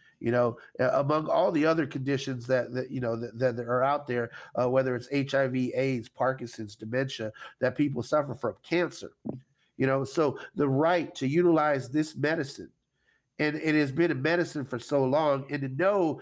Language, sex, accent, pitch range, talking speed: English, male, American, 130-165 Hz, 180 wpm